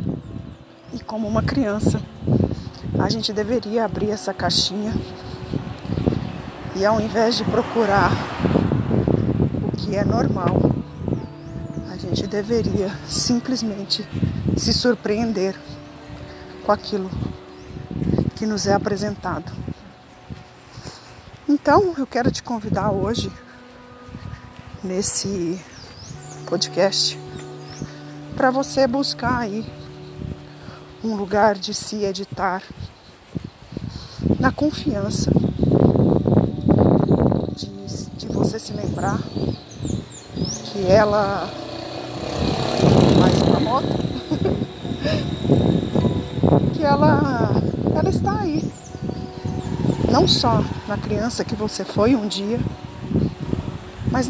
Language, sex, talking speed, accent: Portuguese, female, 80 wpm, Brazilian